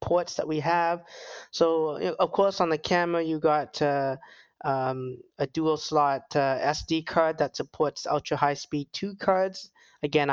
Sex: male